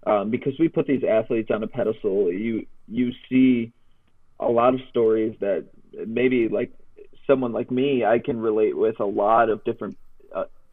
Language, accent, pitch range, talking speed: English, American, 115-140 Hz, 175 wpm